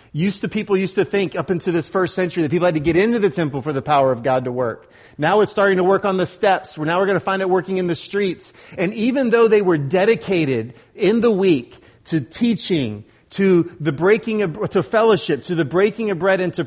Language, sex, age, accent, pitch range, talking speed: English, male, 40-59, American, 120-185 Hz, 245 wpm